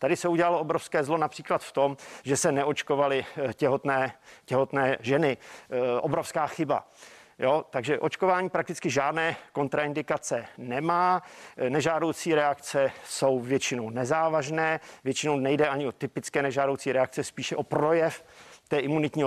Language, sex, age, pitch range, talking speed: Czech, male, 50-69, 135-160 Hz, 125 wpm